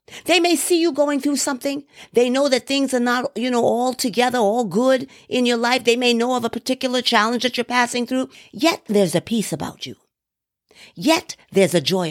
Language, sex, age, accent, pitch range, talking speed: English, female, 50-69, American, 185-245 Hz, 215 wpm